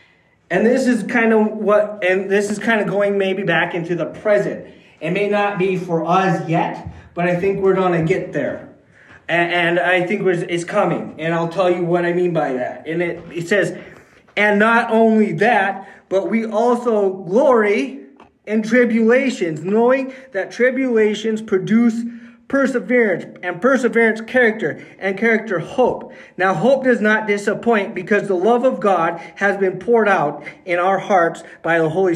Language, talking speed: English, 170 wpm